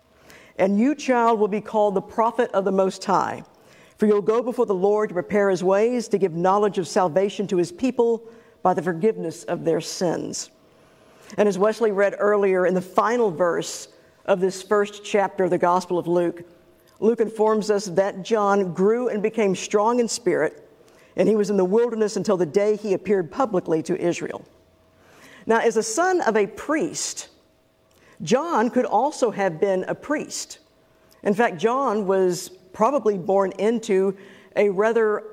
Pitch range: 190-225 Hz